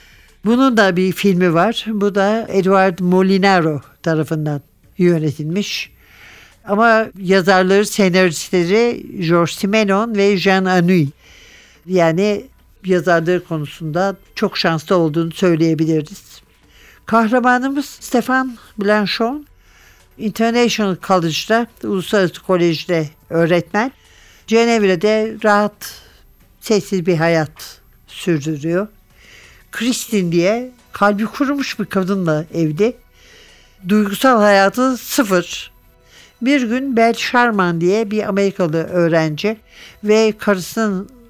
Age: 60-79